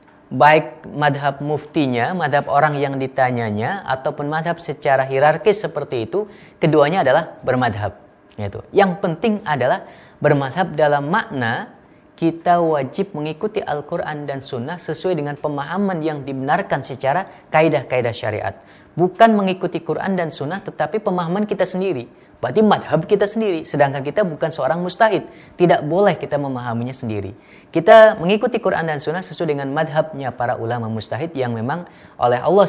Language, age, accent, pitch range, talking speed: Indonesian, 30-49, native, 125-175 Hz, 135 wpm